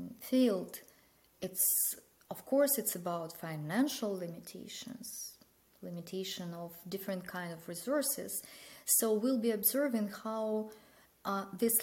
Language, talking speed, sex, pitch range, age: English, 105 wpm, female, 175-225 Hz, 20-39